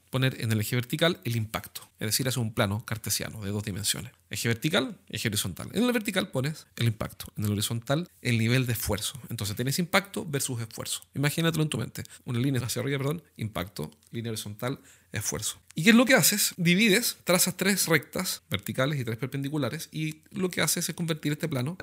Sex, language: male, Spanish